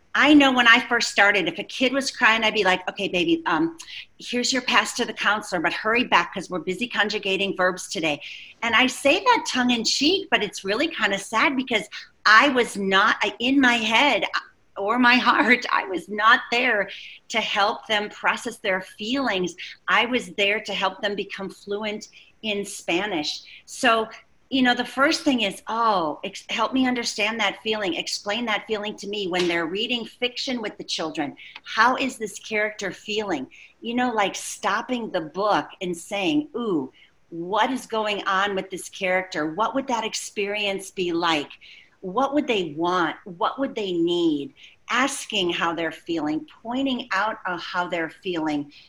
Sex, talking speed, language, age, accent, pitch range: female, 180 wpm, English, 40-59, American, 190-250 Hz